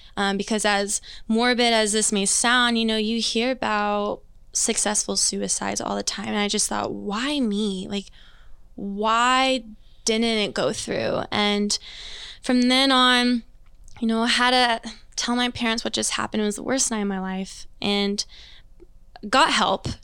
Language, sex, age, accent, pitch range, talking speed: English, female, 20-39, American, 205-240 Hz, 170 wpm